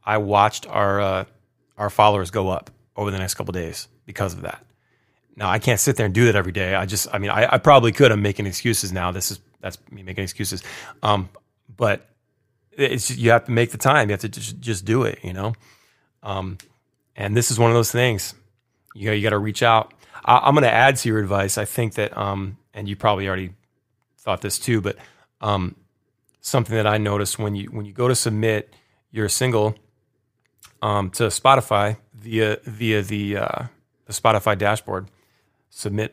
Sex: male